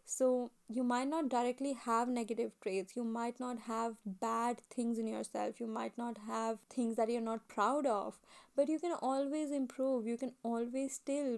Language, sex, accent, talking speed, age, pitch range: English, female, Indian, 185 wpm, 10-29, 230-255 Hz